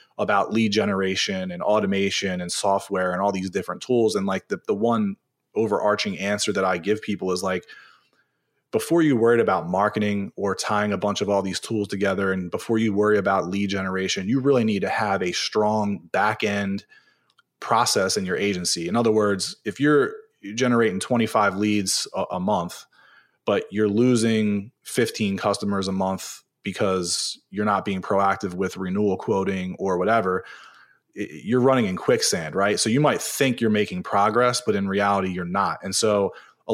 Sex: male